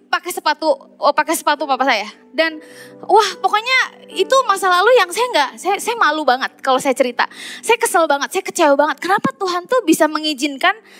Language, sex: Indonesian, female